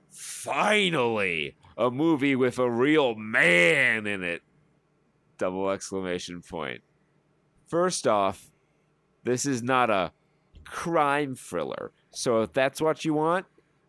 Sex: male